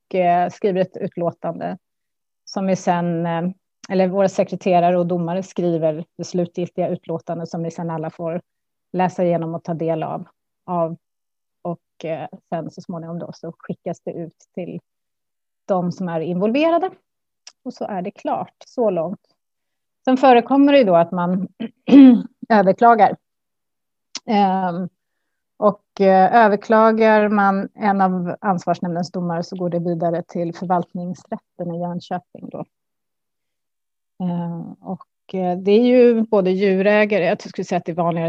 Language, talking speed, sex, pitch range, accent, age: Swedish, 135 wpm, female, 170-200 Hz, native, 30-49